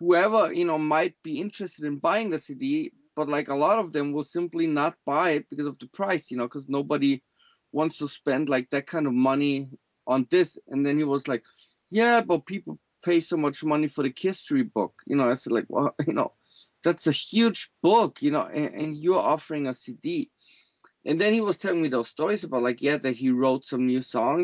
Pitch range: 135-180 Hz